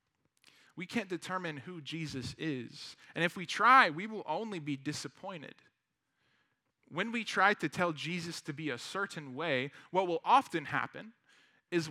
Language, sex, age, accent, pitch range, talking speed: English, male, 20-39, American, 150-200 Hz, 155 wpm